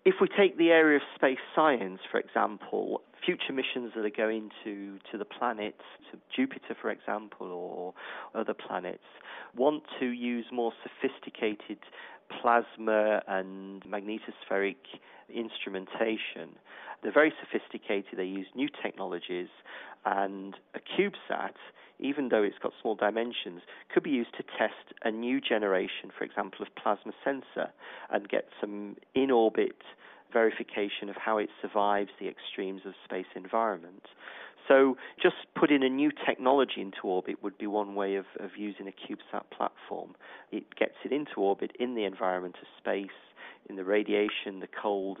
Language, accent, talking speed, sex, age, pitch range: English, British, 150 wpm, male, 40-59, 100-120 Hz